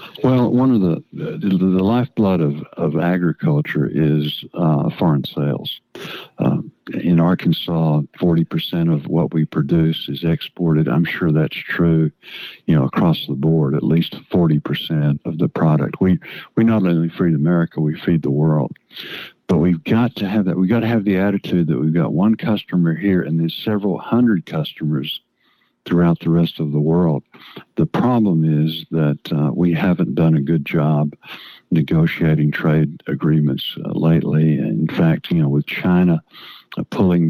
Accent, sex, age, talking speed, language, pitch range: American, male, 60-79, 165 wpm, English, 80-90 Hz